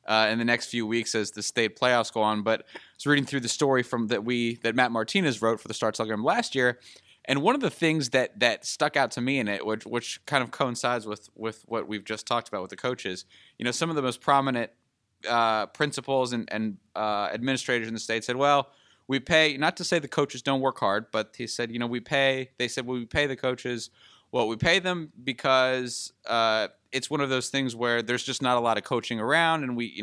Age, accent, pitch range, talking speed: 20-39, American, 115-145 Hz, 250 wpm